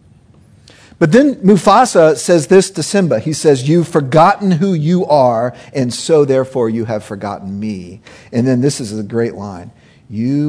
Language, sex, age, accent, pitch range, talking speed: English, male, 50-69, American, 135-190 Hz, 165 wpm